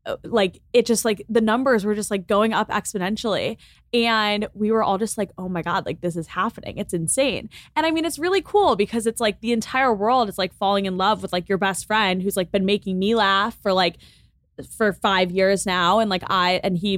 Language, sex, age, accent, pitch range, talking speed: English, female, 10-29, American, 185-225 Hz, 235 wpm